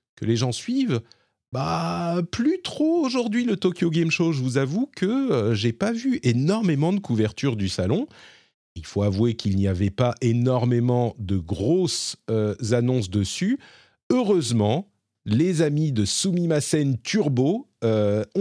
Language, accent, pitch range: French, French, 100-145 Hz